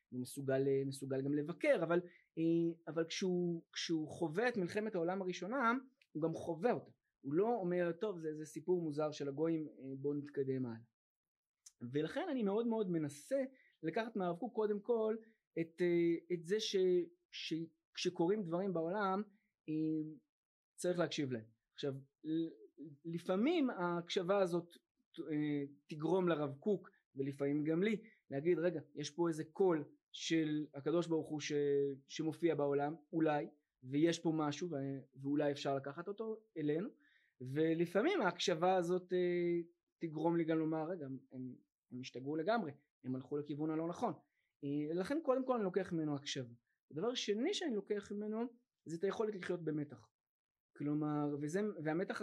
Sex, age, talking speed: male, 20-39, 140 wpm